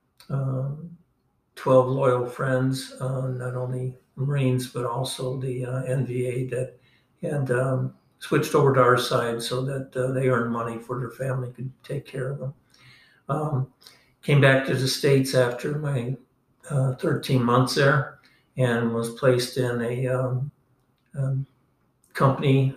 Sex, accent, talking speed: male, American, 145 wpm